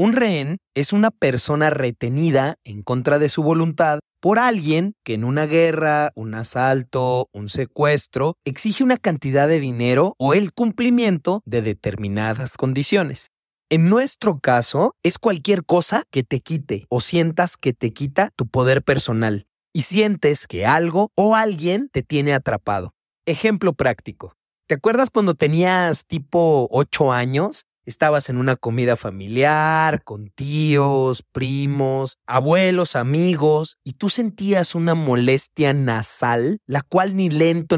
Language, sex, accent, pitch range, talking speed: Spanish, male, Mexican, 125-175 Hz, 140 wpm